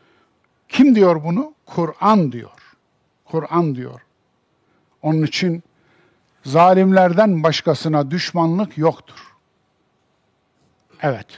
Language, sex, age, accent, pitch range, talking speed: Turkish, male, 50-69, native, 140-185 Hz, 75 wpm